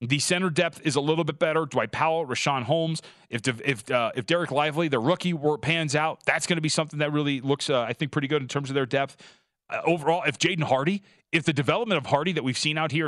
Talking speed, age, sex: 255 wpm, 30-49, male